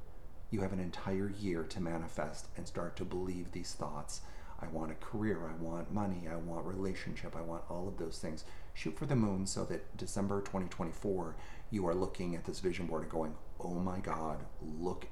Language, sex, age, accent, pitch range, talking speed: English, male, 30-49, American, 80-110 Hz, 200 wpm